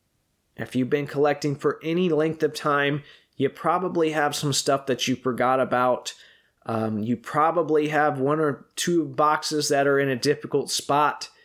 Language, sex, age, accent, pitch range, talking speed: English, male, 20-39, American, 125-150 Hz, 170 wpm